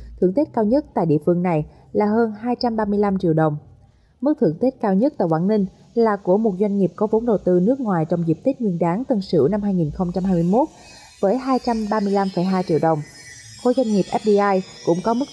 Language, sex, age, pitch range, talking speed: Vietnamese, female, 20-39, 165-230 Hz, 205 wpm